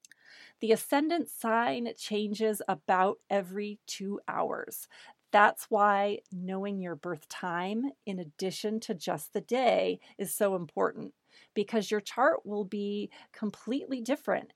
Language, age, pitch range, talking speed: English, 40-59, 195-235 Hz, 125 wpm